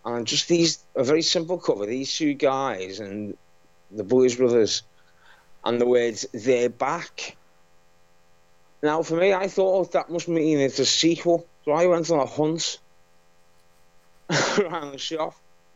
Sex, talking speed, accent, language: male, 150 wpm, British, English